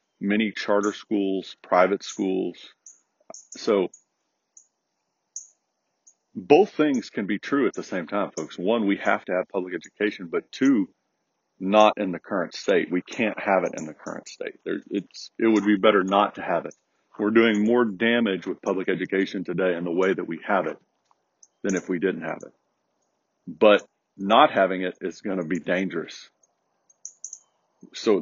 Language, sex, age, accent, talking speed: English, male, 40-59, American, 165 wpm